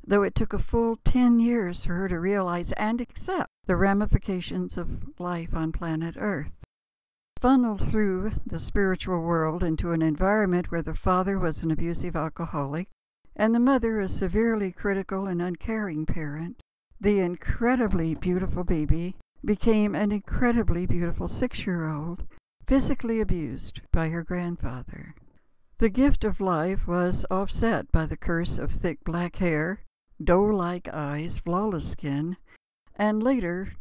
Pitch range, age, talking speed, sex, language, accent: 160-205 Hz, 60-79, 135 wpm, female, English, American